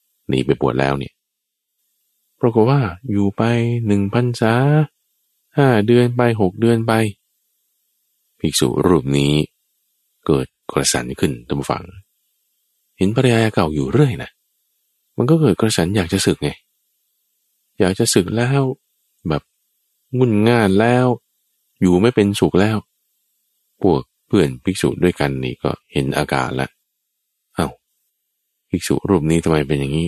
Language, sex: Thai, male